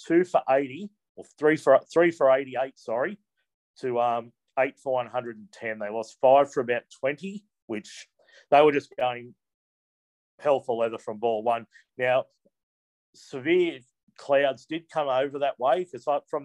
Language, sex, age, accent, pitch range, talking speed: English, male, 40-59, Australian, 120-145 Hz, 170 wpm